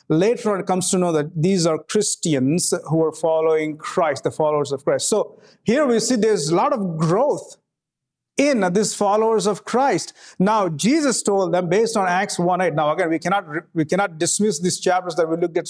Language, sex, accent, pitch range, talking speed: English, male, Indian, 165-205 Hz, 205 wpm